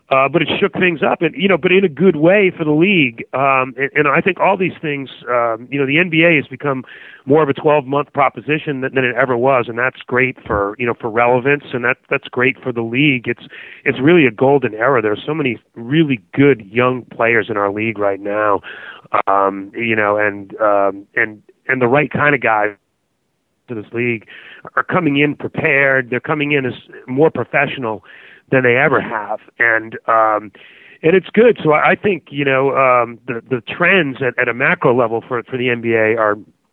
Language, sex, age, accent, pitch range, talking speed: English, male, 30-49, American, 110-140 Hz, 205 wpm